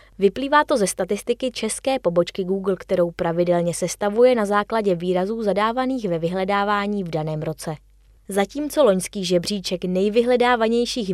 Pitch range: 175-230 Hz